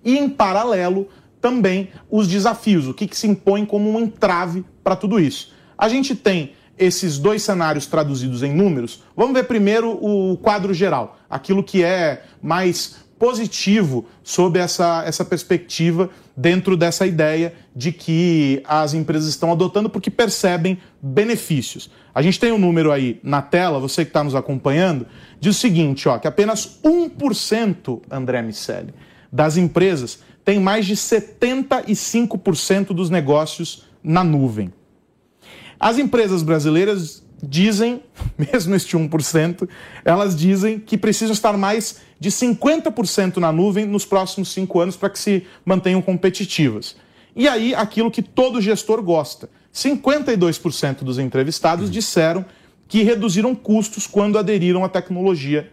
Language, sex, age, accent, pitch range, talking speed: Portuguese, male, 30-49, Brazilian, 160-210 Hz, 140 wpm